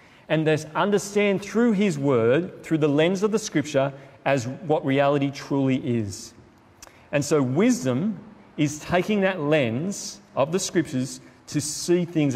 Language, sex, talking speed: English, male, 145 wpm